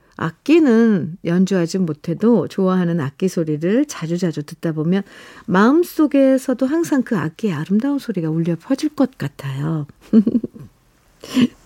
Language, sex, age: Korean, female, 50-69